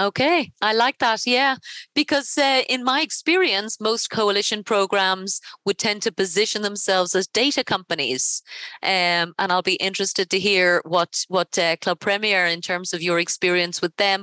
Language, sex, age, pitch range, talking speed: English, female, 30-49, 175-215 Hz, 170 wpm